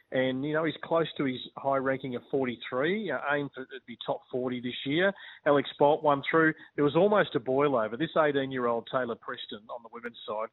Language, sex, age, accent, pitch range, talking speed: English, male, 30-49, Australian, 120-145 Hz, 215 wpm